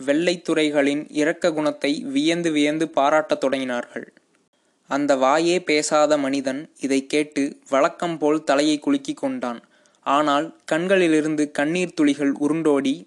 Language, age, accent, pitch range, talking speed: Tamil, 20-39, native, 140-170 Hz, 110 wpm